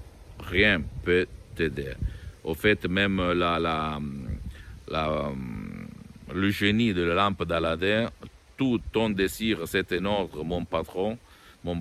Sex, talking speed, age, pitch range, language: male, 125 wpm, 50-69, 90-110 Hz, Italian